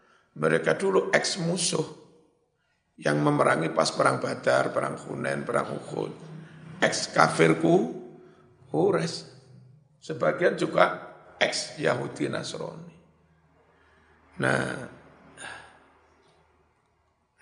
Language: Indonesian